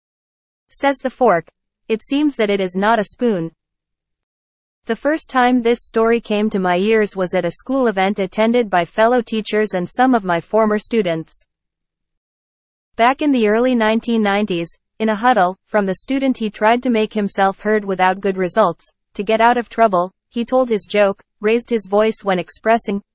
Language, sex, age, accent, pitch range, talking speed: English, female, 30-49, American, 185-235 Hz, 180 wpm